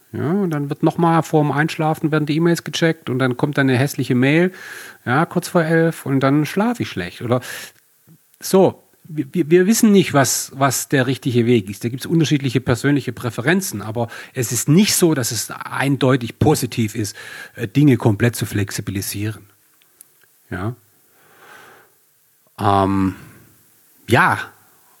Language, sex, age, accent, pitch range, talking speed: German, male, 40-59, German, 110-165 Hz, 150 wpm